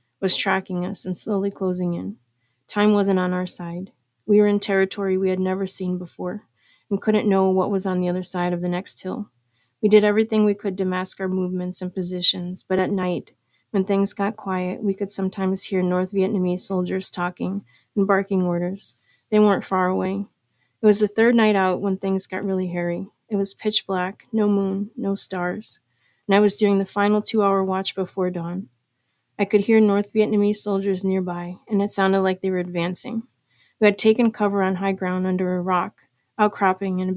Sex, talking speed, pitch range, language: female, 200 wpm, 180-200 Hz, English